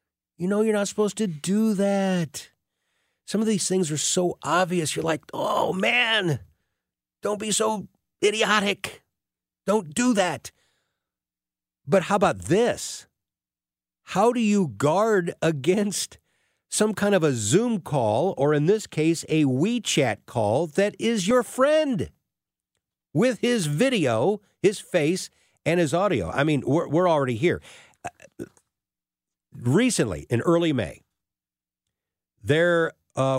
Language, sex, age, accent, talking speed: English, male, 50-69, American, 130 wpm